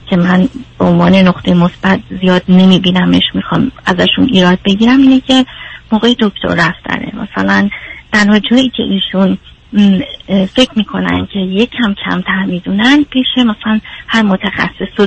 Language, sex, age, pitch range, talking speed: Persian, female, 30-49, 190-245 Hz, 135 wpm